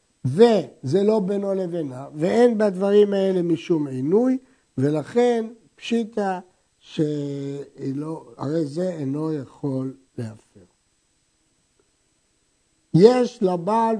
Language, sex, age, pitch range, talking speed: Hebrew, male, 60-79, 160-240 Hz, 75 wpm